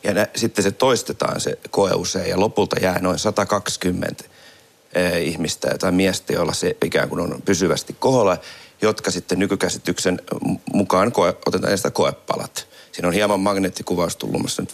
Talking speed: 160 wpm